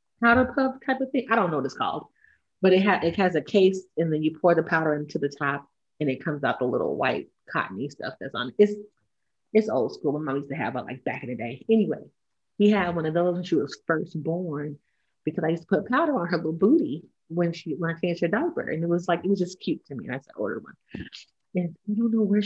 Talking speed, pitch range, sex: 270 wpm, 160-220 Hz, female